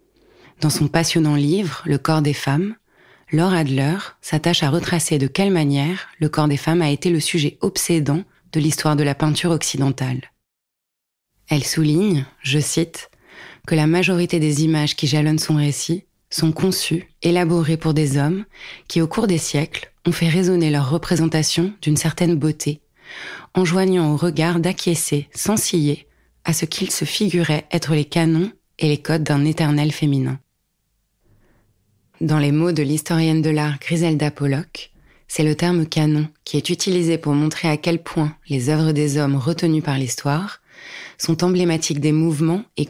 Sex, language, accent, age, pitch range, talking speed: female, French, French, 20-39, 145-170 Hz, 165 wpm